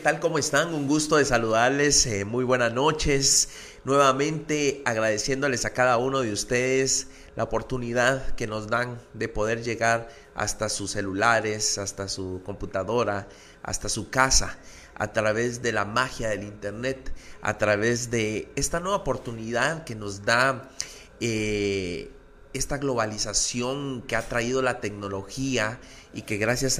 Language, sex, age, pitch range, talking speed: Spanish, male, 30-49, 105-130 Hz, 140 wpm